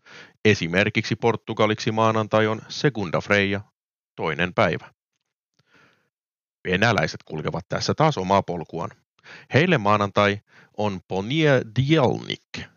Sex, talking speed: male, 90 wpm